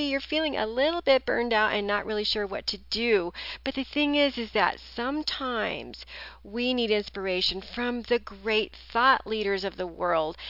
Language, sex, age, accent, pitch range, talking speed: English, female, 40-59, American, 190-250 Hz, 185 wpm